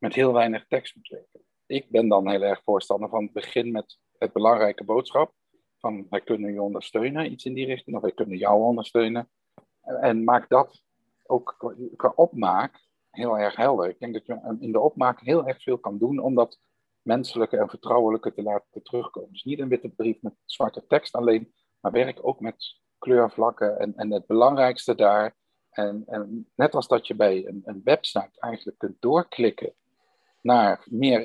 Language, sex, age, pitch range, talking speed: Dutch, male, 50-69, 105-130 Hz, 185 wpm